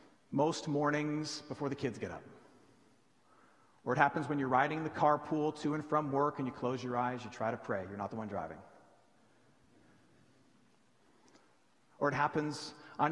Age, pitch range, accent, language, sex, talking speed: 40-59, 125-155 Hz, American, English, male, 170 wpm